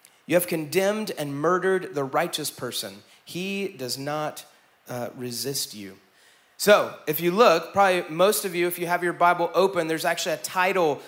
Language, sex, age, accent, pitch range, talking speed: English, male, 30-49, American, 160-200 Hz, 175 wpm